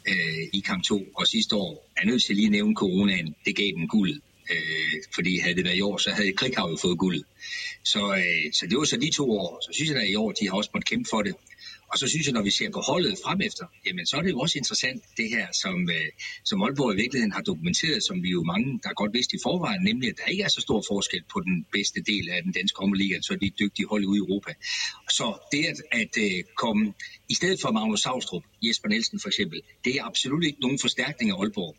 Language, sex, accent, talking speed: Danish, male, native, 255 wpm